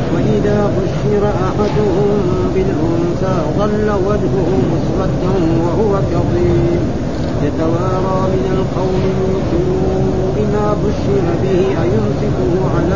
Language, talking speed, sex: Arabic, 75 wpm, male